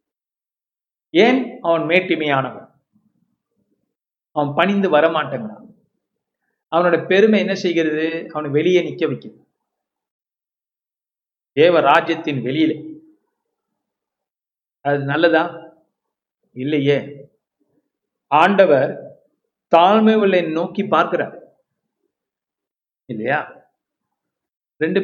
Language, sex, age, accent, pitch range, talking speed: Tamil, male, 50-69, native, 145-175 Hz, 65 wpm